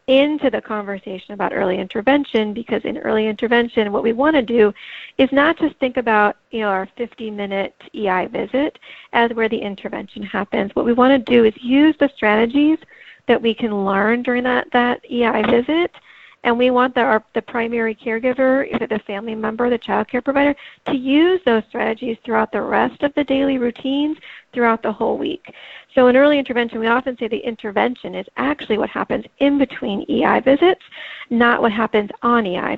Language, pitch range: English, 220-270 Hz